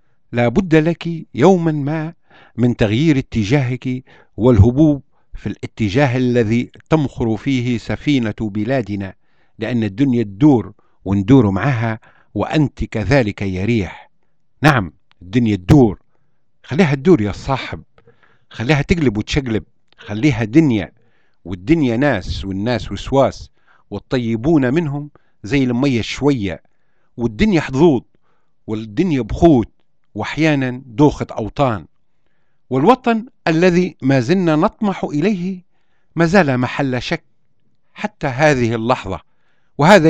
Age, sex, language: 50-69, male, Arabic